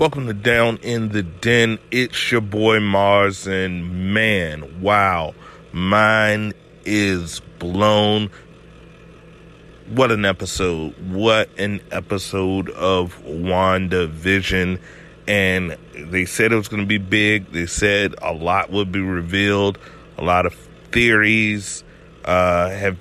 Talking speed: 120 wpm